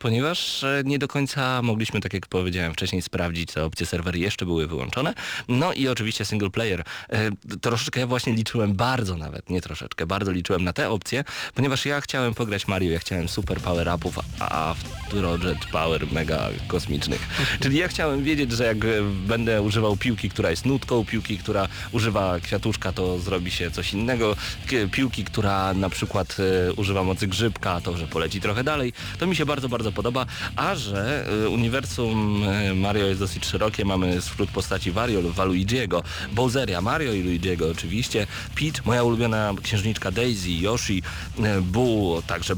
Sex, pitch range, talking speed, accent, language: male, 90-115 Hz, 165 wpm, native, Polish